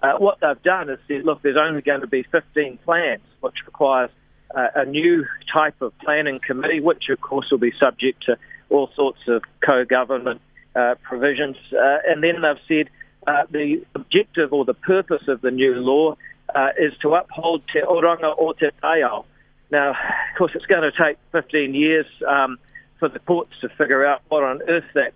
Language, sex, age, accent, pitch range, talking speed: English, male, 40-59, Australian, 130-155 Hz, 190 wpm